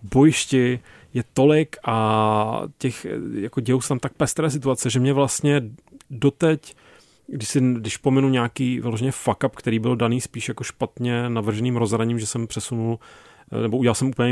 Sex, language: male, Czech